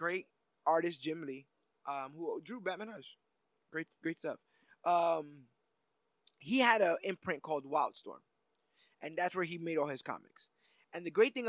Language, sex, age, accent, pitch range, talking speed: English, male, 20-39, American, 145-195 Hz, 160 wpm